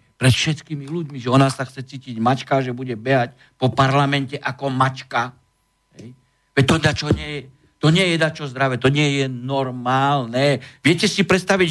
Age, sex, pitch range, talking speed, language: 60-79, male, 135-180 Hz, 175 wpm, Slovak